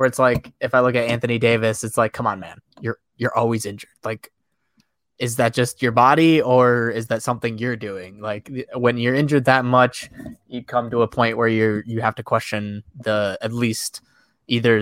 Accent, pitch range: American, 115-155 Hz